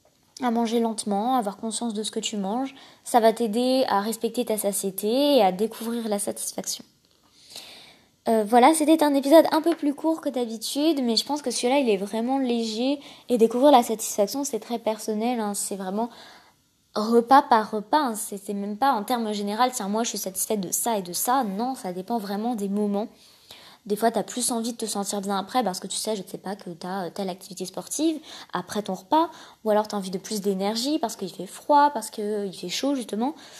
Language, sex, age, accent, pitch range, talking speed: French, female, 20-39, French, 205-250 Hz, 225 wpm